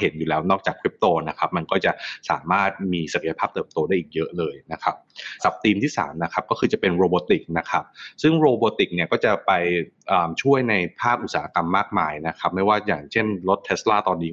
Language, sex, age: Thai, male, 20-39